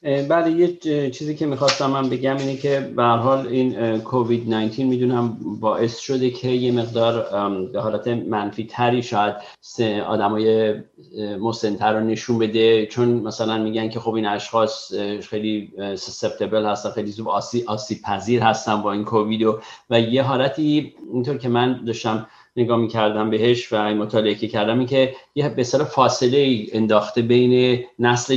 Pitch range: 110-125 Hz